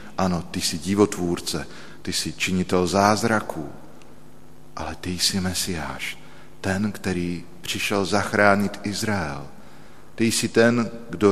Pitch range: 85-105 Hz